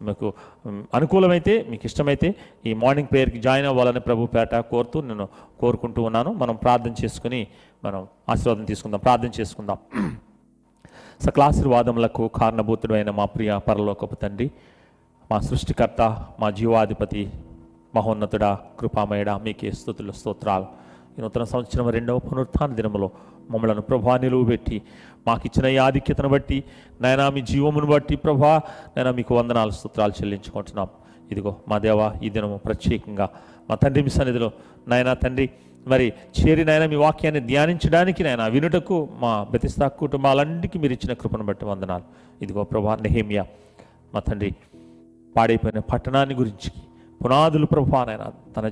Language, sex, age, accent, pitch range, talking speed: Telugu, male, 30-49, native, 105-130 Hz, 125 wpm